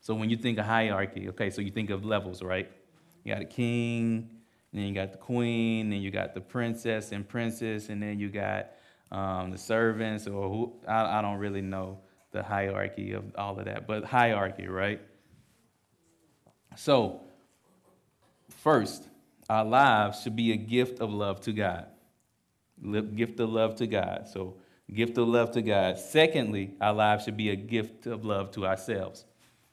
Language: English